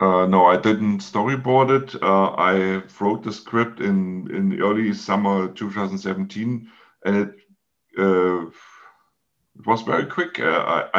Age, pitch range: 50-69, 95-115 Hz